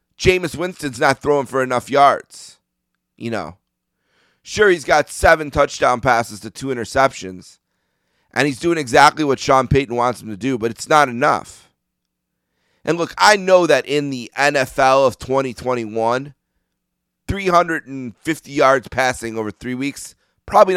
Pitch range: 115-155 Hz